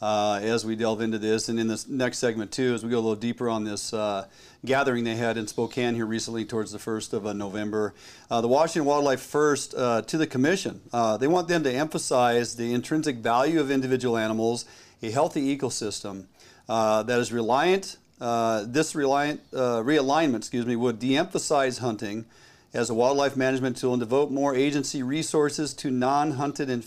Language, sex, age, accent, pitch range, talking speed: English, male, 40-59, American, 115-135 Hz, 190 wpm